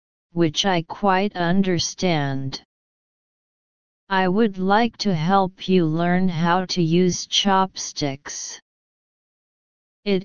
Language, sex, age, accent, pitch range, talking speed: English, female, 40-59, American, 160-195 Hz, 95 wpm